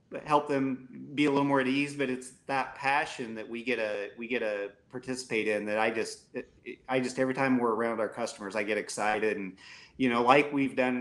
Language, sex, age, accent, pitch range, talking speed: English, male, 30-49, American, 115-135 Hz, 225 wpm